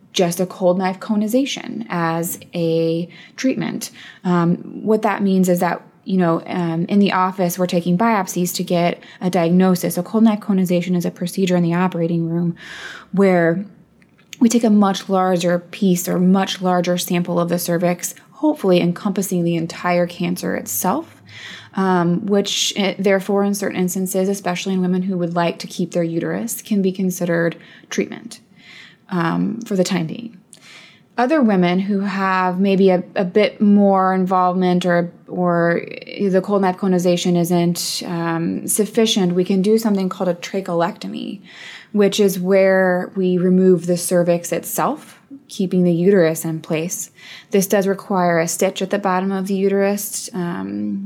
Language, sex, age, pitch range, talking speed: English, female, 20-39, 175-200 Hz, 155 wpm